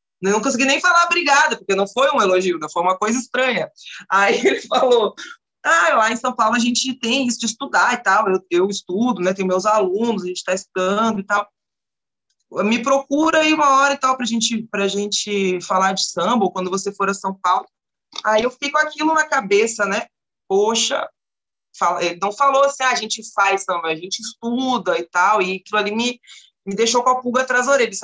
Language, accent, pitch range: Portuguese, Brazilian, 195-255 Hz